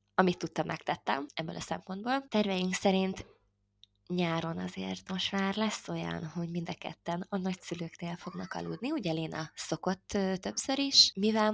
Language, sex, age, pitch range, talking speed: Hungarian, female, 20-39, 155-200 Hz, 145 wpm